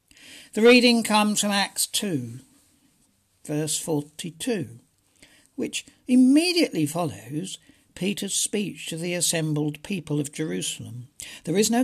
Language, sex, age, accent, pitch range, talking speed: English, male, 60-79, British, 140-200 Hz, 110 wpm